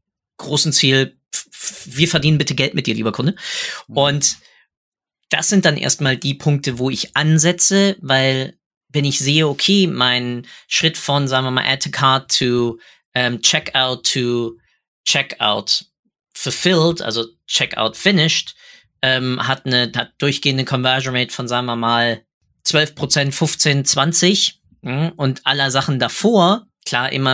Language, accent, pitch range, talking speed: German, German, 125-155 Hz, 130 wpm